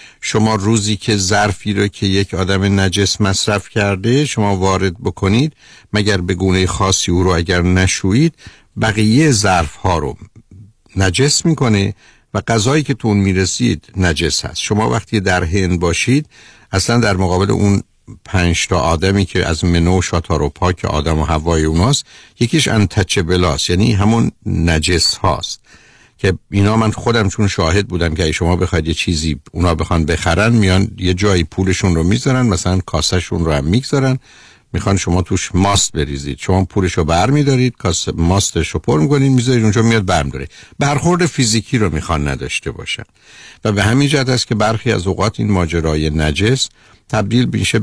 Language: Persian